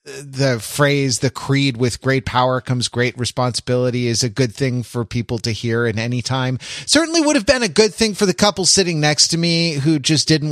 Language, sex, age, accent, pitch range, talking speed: English, male, 30-49, American, 125-170 Hz, 215 wpm